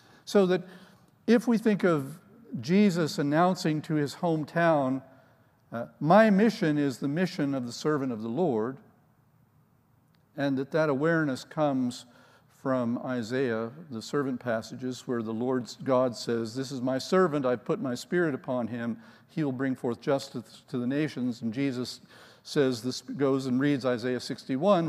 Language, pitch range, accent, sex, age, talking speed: English, 120-150 Hz, American, male, 50-69, 155 wpm